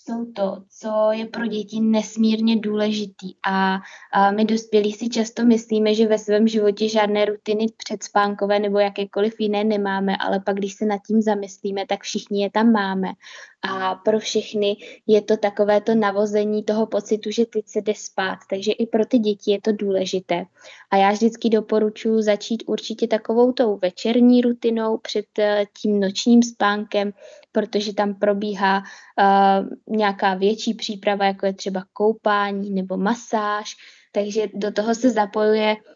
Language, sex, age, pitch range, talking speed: Czech, female, 20-39, 200-220 Hz, 155 wpm